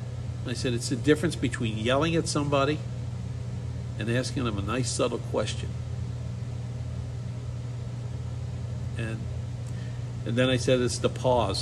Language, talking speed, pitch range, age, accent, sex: English, 125 wpm, 115-130 Hz, 50-69, American, male